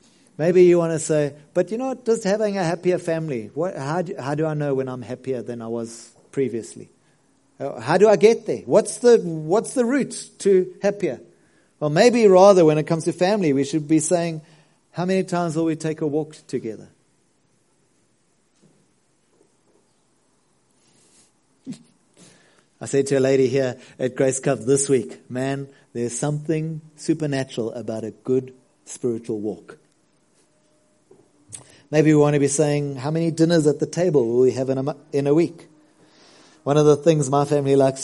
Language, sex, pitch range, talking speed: English, male, 130-165 Hz, 170 wpm